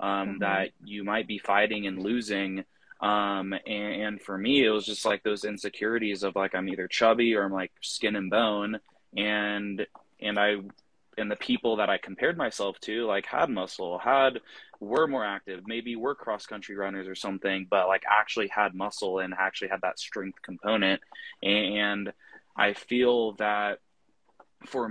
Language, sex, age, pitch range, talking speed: English, male, 20-39, 100-110 Hz, 170 wpm